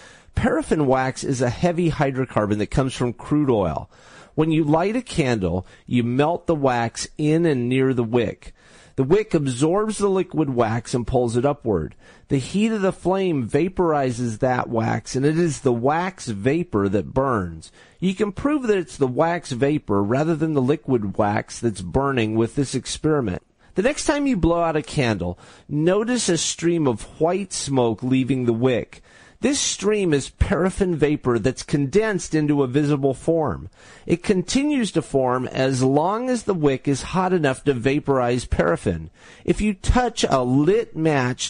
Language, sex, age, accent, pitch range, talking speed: English, male, 40-59, American, 125-175 Hz, 170 wpm